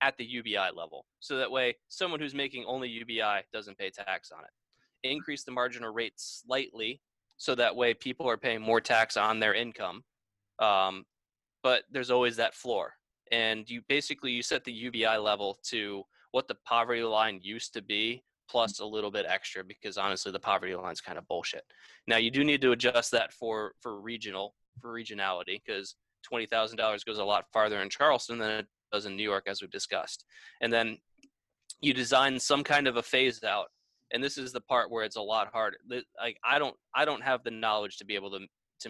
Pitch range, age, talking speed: 105-125 Hz, 20-39, 205 wpm